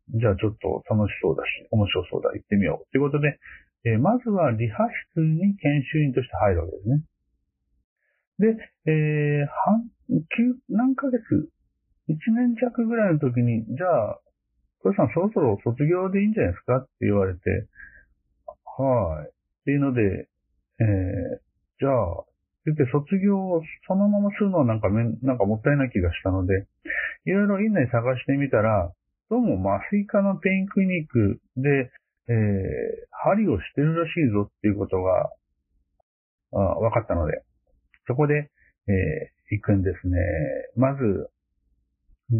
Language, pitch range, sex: Japanese, 95-155 Hz, male